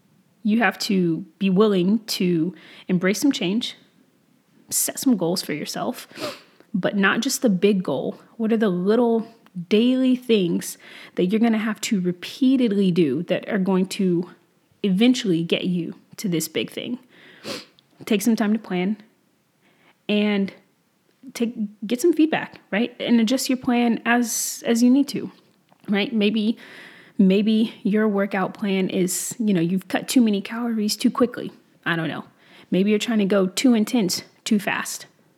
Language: English